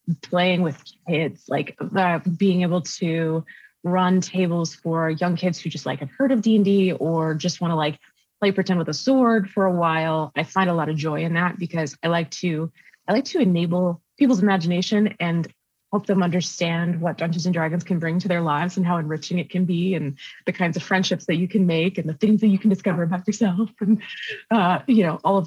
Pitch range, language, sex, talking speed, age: 170-215 Hz, English, female, 220 wpm, 20-39